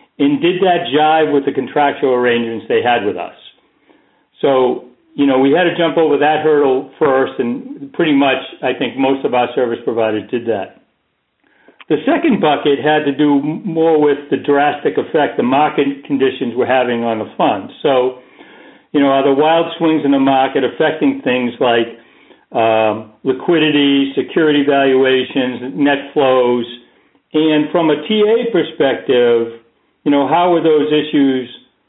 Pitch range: 130-155 Hz